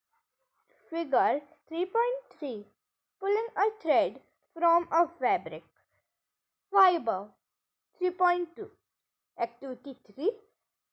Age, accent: 20-39, native